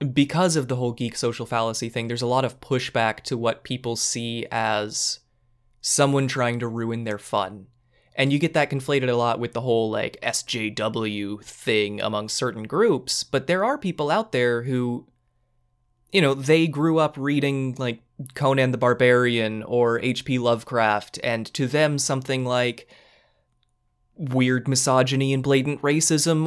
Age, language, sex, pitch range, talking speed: 20-39, English, male, 115-145 Hz, 160 wpm